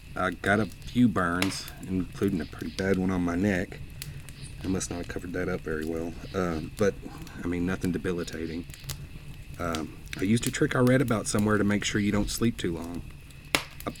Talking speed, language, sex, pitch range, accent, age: 195 wpm, English, male, 85-115 Hz, American, 40-59